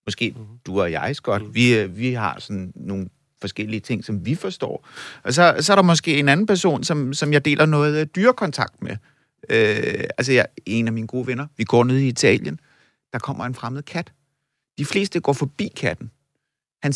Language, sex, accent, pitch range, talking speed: Danish, male, native, 120-165 Hz, 195 wpm